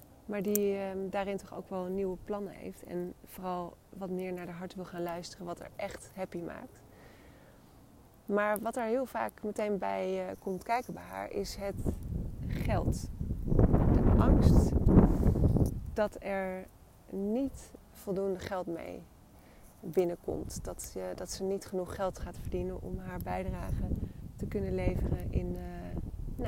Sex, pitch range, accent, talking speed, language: female, 170-200 Hz, Dutch, 145 wpm, Dutch